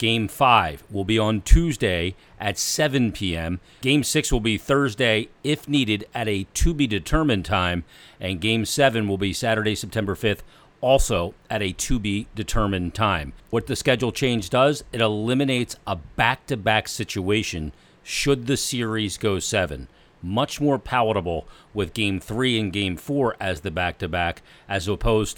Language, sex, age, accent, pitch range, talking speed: English, male, 40-59, American, 100-125 Hz, 145 wpm